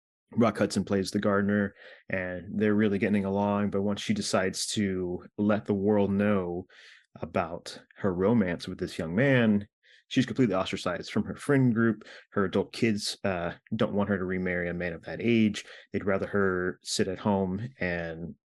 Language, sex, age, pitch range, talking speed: English, male, 30-49, 90-105 Hz, 175 wpm